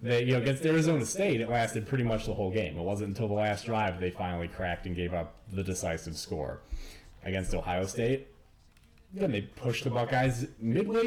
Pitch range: 95-120 Hz